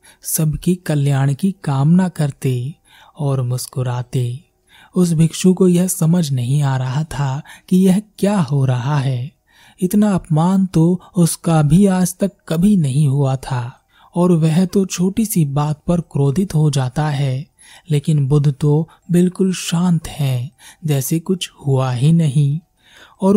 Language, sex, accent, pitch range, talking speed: Hindi, male, native, 140-180 Hz, 145 wpm